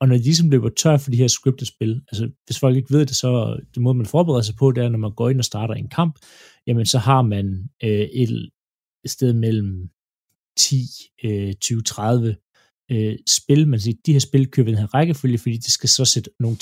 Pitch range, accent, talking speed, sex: 110-135 Hz, native, 230 wpm, male